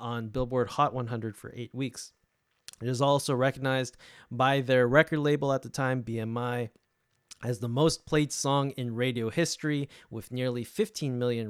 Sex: male